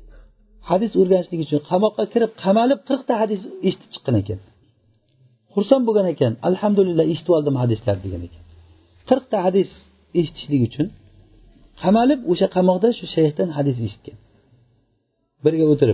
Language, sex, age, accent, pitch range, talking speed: Russian, male, 50-69, Turkish, 135-190 Hz, 110 wpm